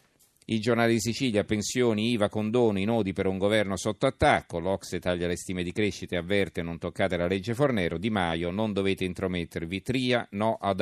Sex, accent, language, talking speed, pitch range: male, native, Italian, 190 wpm, 85-110 Hz